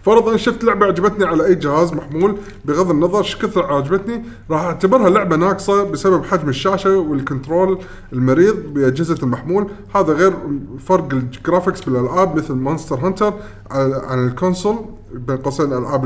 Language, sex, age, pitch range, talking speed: Arabic, male, 20-39, 130-185 Hz, 135 wpm